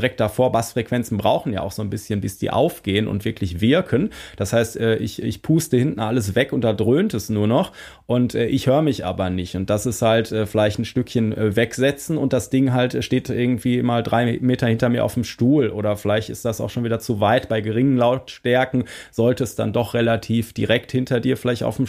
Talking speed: 220 wpm